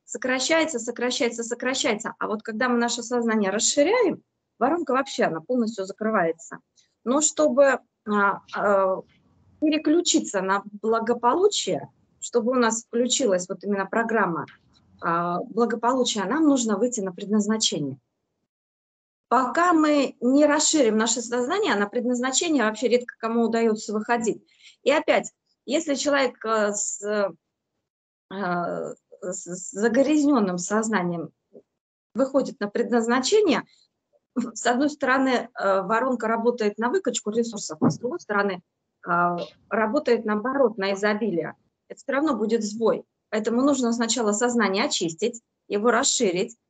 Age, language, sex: 20-39, Russian, female